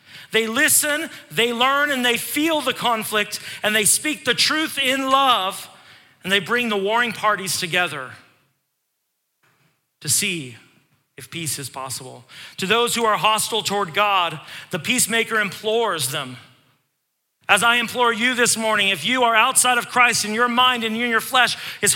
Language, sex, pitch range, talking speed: English, male, 180-240 Hz, 160 wpm